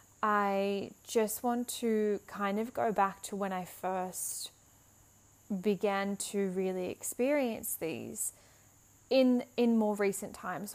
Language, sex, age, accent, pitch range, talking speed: English, female, 10-29, Australian, 190-215 Hz, 125 wpm